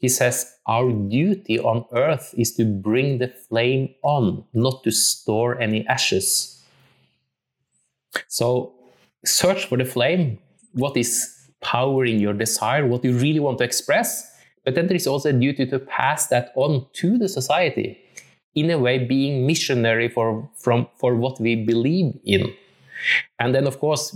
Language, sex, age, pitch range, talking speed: English, male, 20-39, 115-140 Hz, 155 wpm